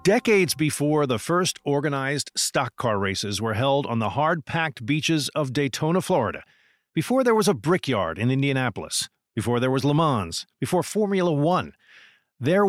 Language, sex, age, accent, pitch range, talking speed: English, male, 50-69, American, 130-175 Hz, 155 wpm